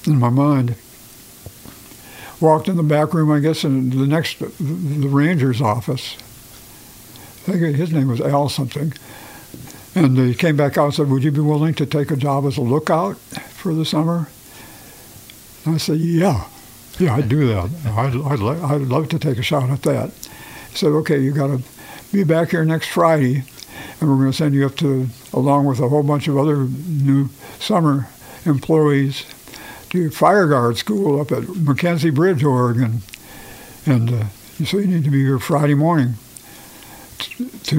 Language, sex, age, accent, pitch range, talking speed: English, male, 60-79, American, 130-155 Hz, 180 wpm